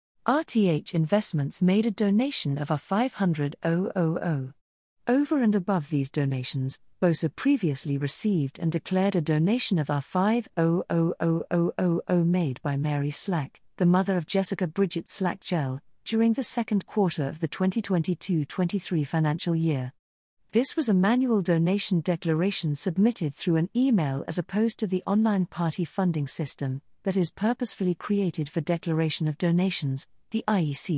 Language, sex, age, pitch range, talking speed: English, female, 50-69, 155-205 Hz, 135 wpm